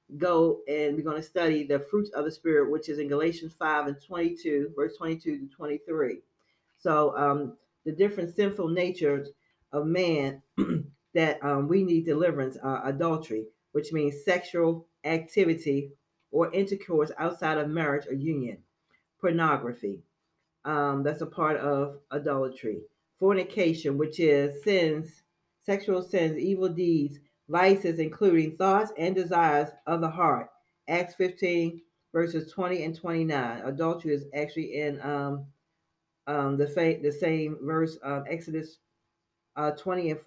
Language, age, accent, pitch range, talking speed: English, 40-59, American, 145-175 Hz, 145 wpm